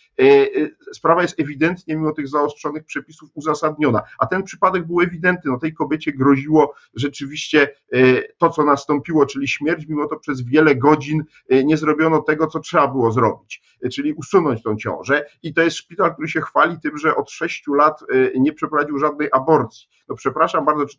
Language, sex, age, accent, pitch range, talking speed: Polish, male, 50-69, native, 140-165 Hz, 170 wpm